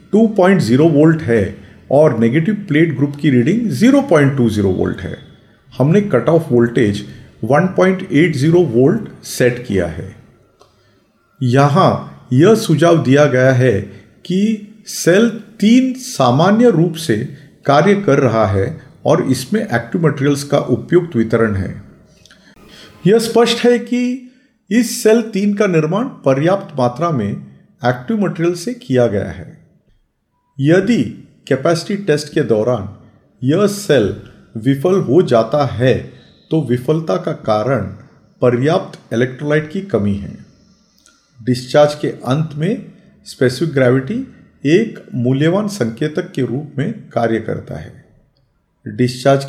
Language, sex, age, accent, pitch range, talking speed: English, male, 50-69, Indian, 125-185 Hz, 120 wpm